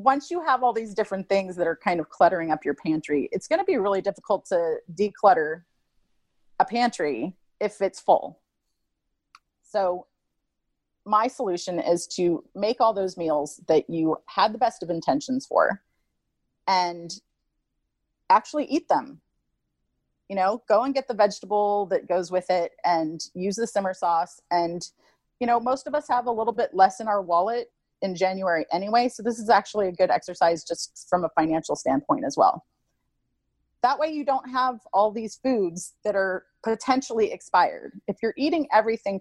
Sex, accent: female, American